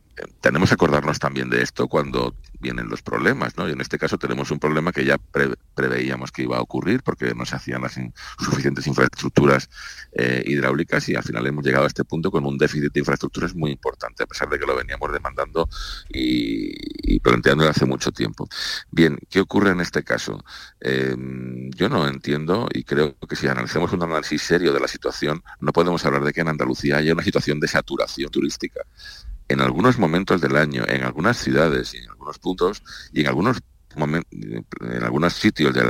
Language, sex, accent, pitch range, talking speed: Spanish, male, Spanish, 65-85 Hz, 195 wpm